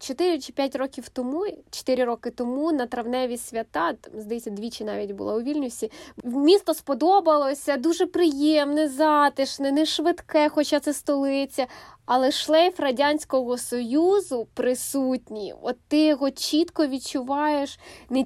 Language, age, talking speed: Ukrainian, 20-39, 125 wpm